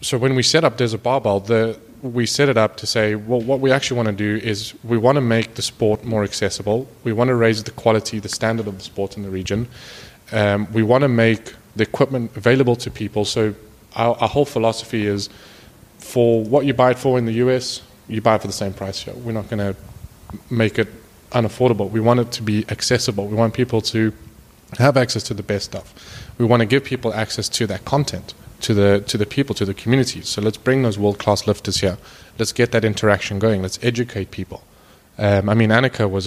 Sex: male